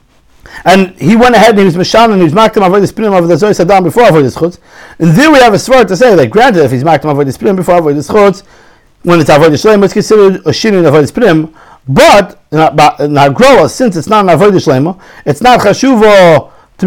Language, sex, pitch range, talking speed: English, male, 160-215 Hz, 220 wpm